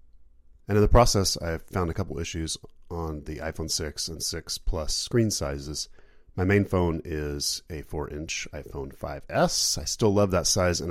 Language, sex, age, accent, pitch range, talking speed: English, male, 30-49, American, 75-90 Hz, 175 wpm